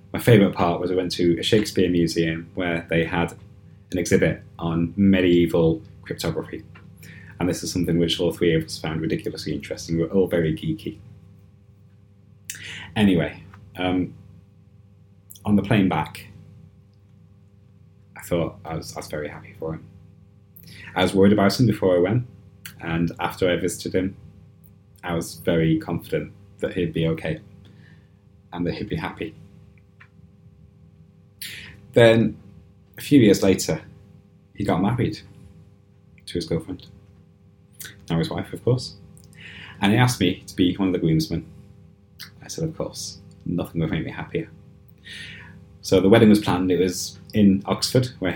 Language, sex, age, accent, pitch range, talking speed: English, male, 30-49, British, 85-100 Hz, 150 wpm